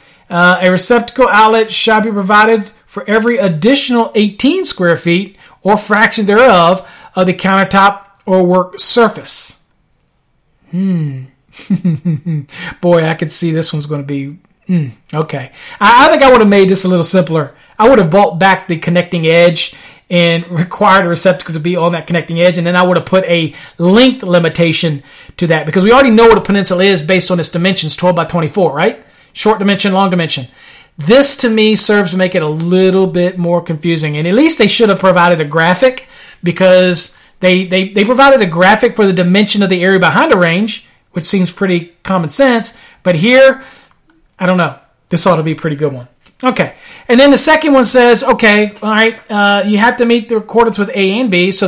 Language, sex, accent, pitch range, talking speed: English, male, American, 175-220 Hz, 195 wpm